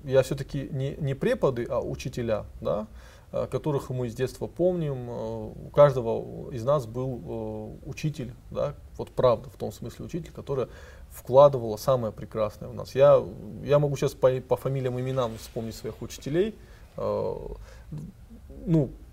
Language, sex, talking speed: Russian, male, 140 wpm